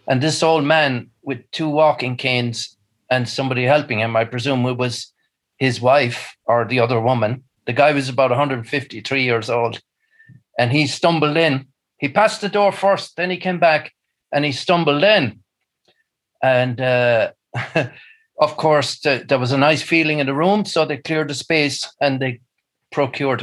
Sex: male